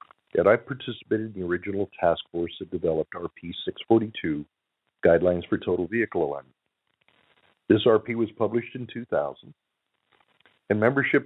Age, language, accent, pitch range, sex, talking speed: 50-69, English, American, 90-115 Hz, male, 135 wpm